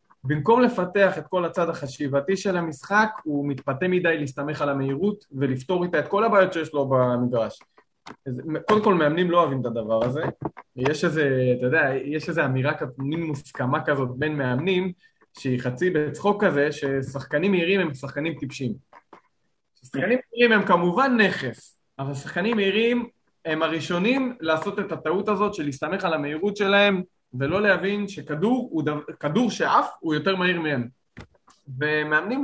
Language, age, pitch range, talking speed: Hebrew, 20-39, 145-180 Hz, 145 wpm